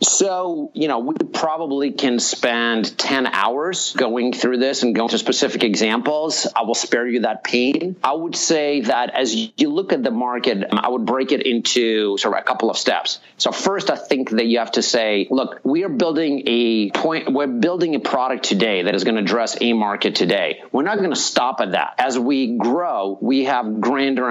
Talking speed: 200 wpm